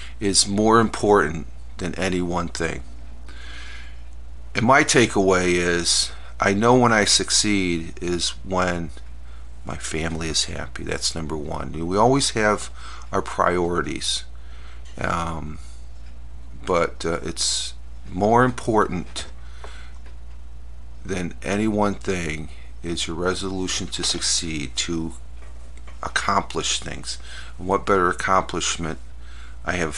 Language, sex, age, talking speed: English, male, 50-69, 110 wpm